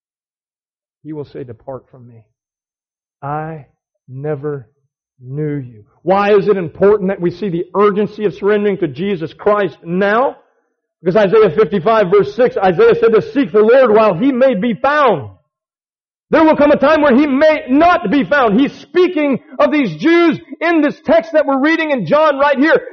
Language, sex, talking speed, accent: English, male, 175 wpm, American